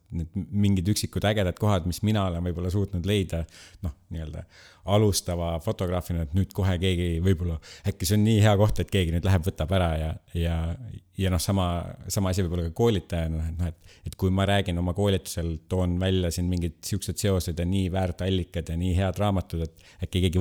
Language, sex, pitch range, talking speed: English, male, 85-100 Hz, 185 wpm